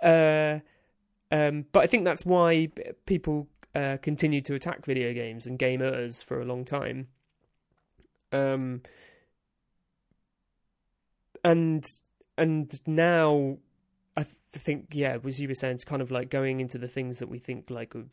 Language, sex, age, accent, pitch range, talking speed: English, male, 20-39, British, 125-150 Hz, 145 wpm